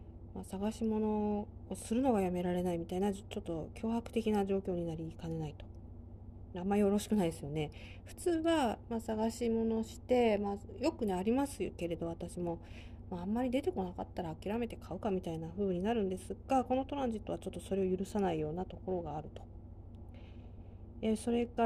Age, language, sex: 40-59, Japanese, female